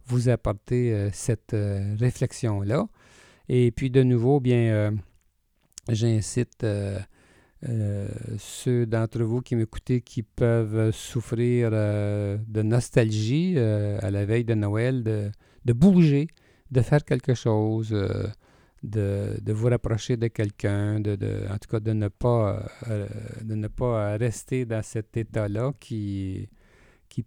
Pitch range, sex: 105-125 Hz, male